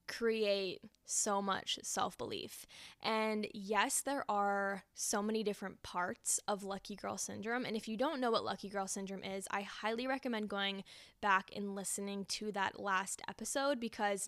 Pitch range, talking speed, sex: 195-225 Hz, 160 wpm, female